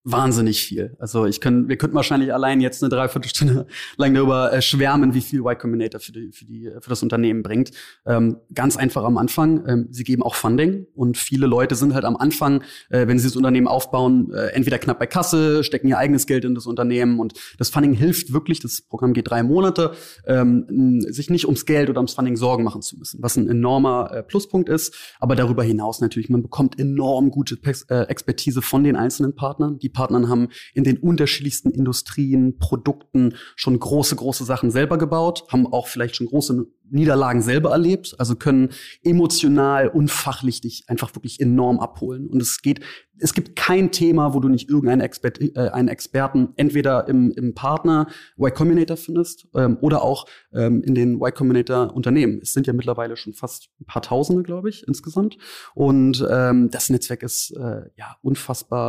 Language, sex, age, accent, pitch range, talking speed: German, male, 20-39, German, 120-145 Hz, 180 wpm